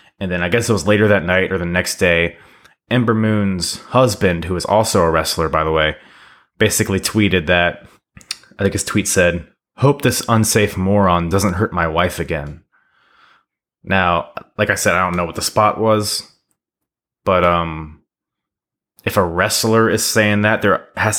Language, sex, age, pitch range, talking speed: English, male, 20-39, 85-105 Hz, 175 wpm